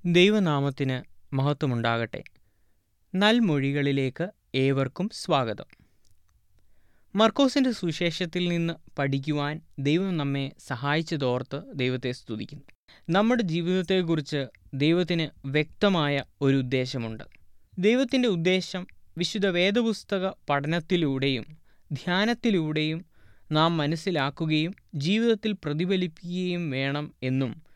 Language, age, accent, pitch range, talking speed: Malayalam, 20-39, native, 135-185 Hz, 70 wpm